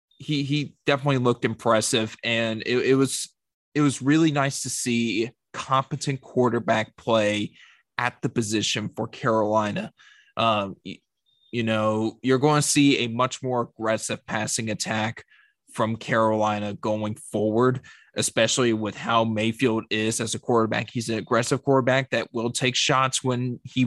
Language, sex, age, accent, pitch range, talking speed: English, male, 20-39, American, 115-145 Hz, 145 wpm